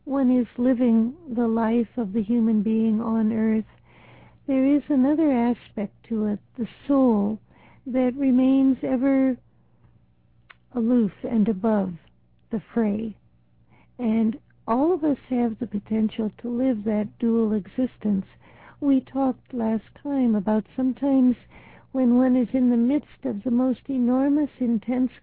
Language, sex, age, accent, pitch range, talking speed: English, female, 60-79, American, 220-260 Hz, 135 wpm